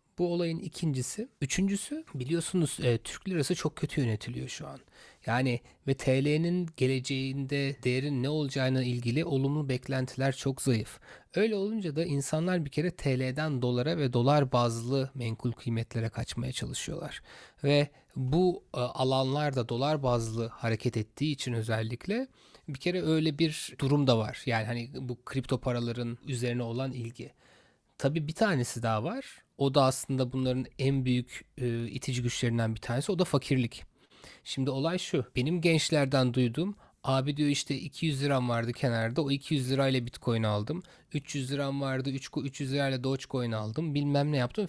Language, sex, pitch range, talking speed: Turkish, male, 125-155 Hz, 145 wpm